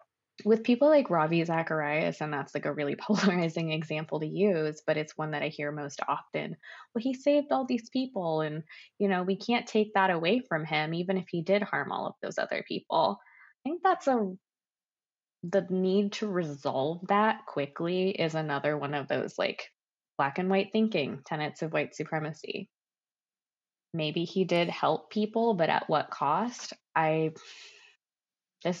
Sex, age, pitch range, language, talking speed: female, 20-39, 150-195 Hz, English, 175 wpm